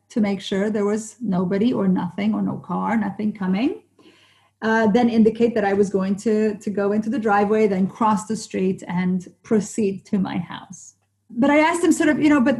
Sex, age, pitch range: female, 40-59, 185-245 Hz